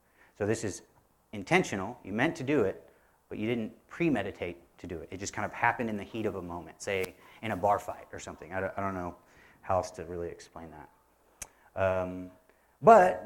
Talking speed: 210 wpm